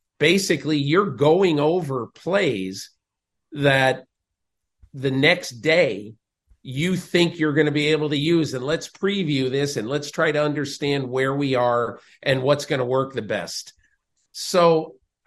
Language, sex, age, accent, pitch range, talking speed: English, male, 50-69, American, 140-175 Hz, 150 wpm